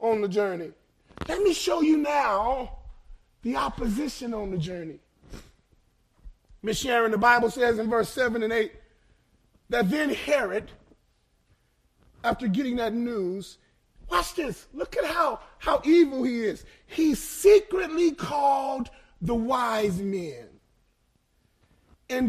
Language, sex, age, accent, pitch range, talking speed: English, male, 30-49, American, 205-305 Hz, 125 wpm